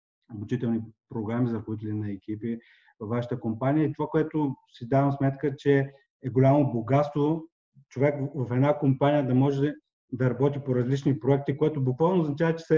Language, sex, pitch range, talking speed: Bulgarian, male, 125-155 Hz, 165 wpm